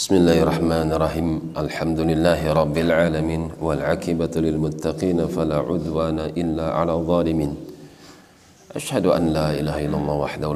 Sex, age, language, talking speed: male, 40-59, Indonesian, 75 wpm